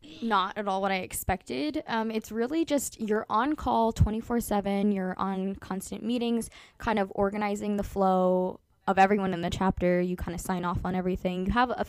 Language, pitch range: English, 180-210 Hz